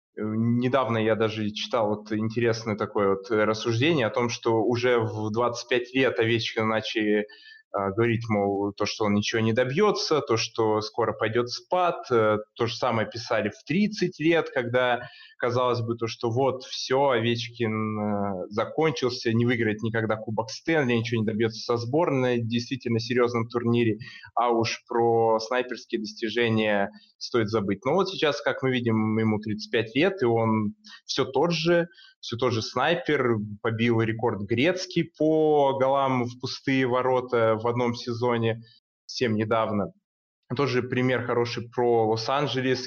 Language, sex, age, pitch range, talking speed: Russian, male, 20-39, 115-130 Hz, 145 wpm